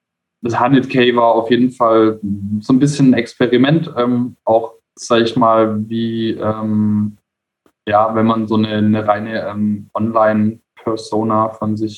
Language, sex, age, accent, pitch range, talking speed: German, male, 20-39, German, 105-120 Hz, 145 wpm